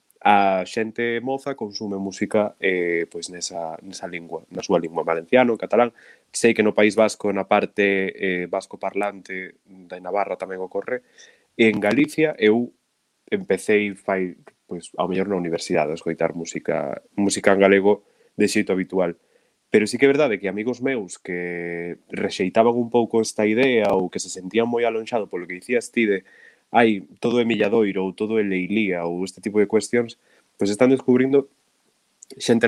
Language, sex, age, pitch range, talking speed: English, male, 20-39, 95-120 Hz, 160 wpm